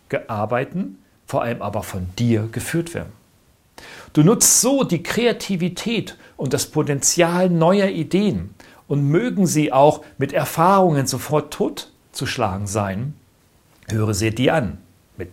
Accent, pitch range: German, 110-160 Hz